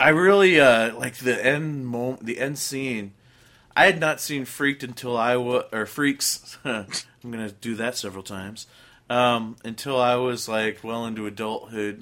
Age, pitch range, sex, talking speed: 30-49, 105-125 Hz, male, 170 wpm